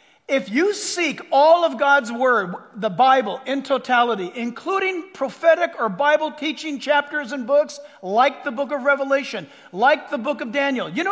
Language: English